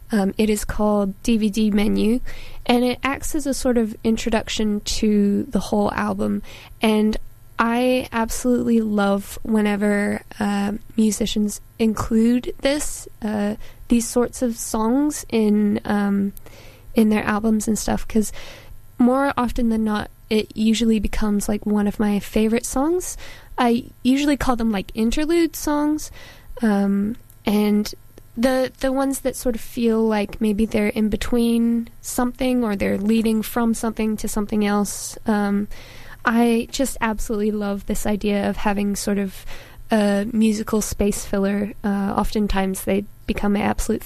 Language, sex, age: English, female, 10-29